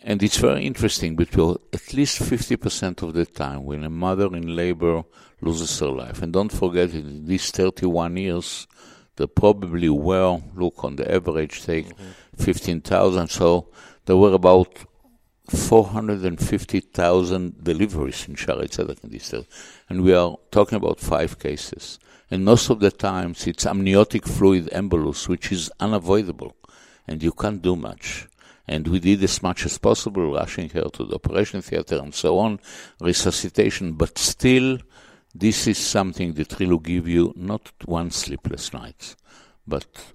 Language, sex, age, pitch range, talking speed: English, male, 60-79, 85-100 Hz, 150 wpm